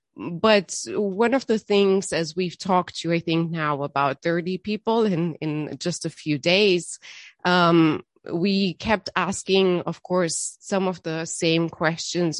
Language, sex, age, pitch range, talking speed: English, female, 30-49, 150-180 Hz, 155 wpm